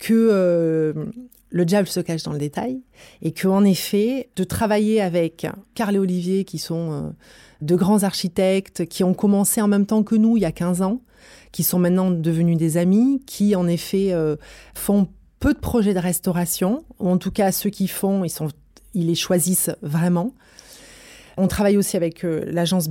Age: 30-49